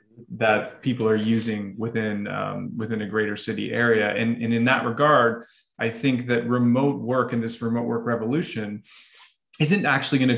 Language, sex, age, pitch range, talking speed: English, male, 20-39, 115-130 Hz, 170 wpm